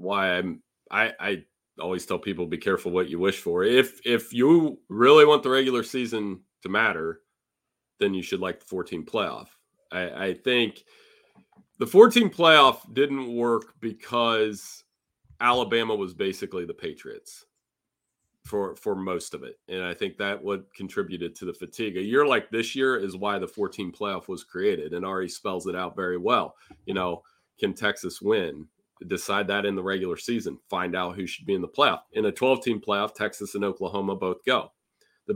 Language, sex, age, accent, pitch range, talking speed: English, male, 30-49, American, 100-135 Hz, 180 wpm